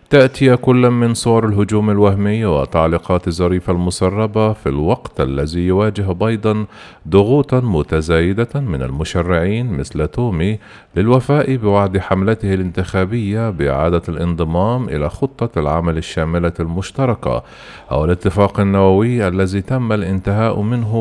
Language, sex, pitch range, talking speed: Arabic, male, 85-115 Hz, 110 wpm